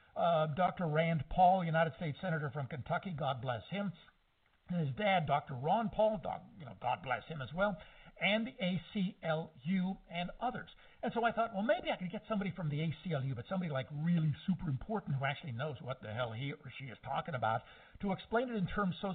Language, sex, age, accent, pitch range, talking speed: English, male, 60-79, American, 135-180 Hz, 205 wpm